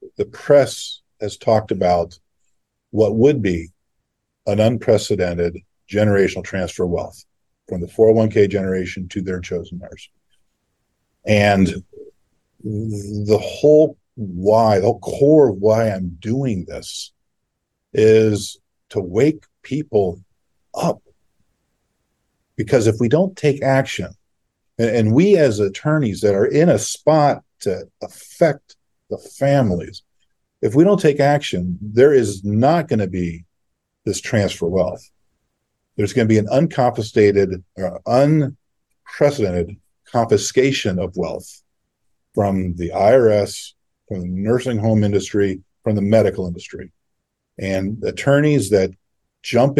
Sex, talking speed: male, 125 wpm